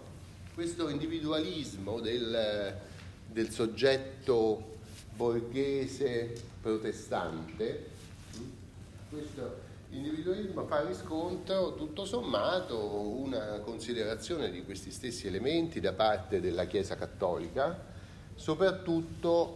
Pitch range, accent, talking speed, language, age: 100-135 Hz, native, 75 wpm, Italian, 30-49